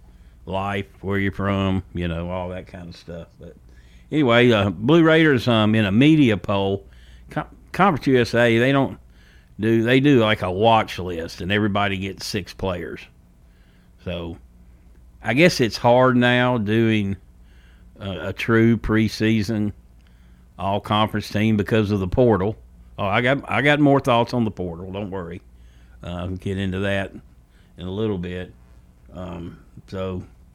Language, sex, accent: English, male, American